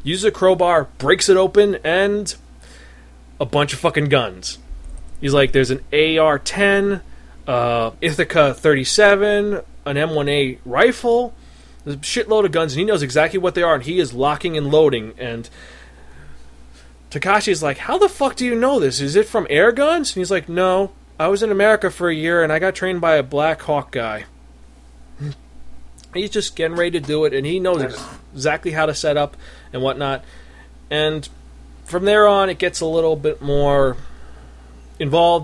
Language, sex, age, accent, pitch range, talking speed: English, male, 20-39, American, 130-175 Hz, 175 wpm